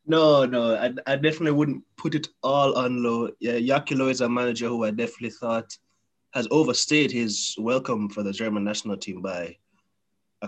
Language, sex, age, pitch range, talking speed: English, male, 20-39, 110-140 Hz, 180 wpm